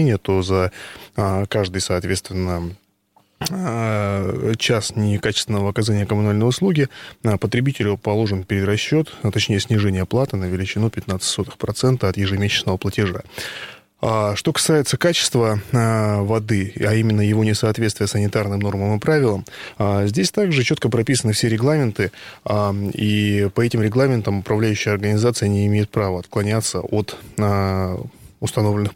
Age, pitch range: 20-39, 100-120 Hz